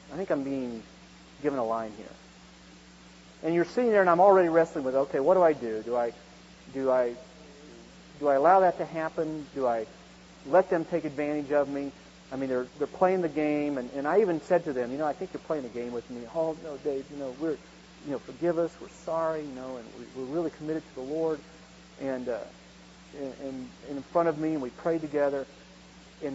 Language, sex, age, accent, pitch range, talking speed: English, male, 40-59, American, 125-155 Hz, 225 wpm